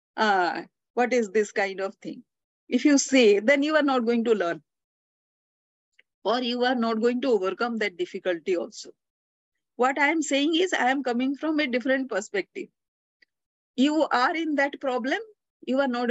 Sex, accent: female, Indian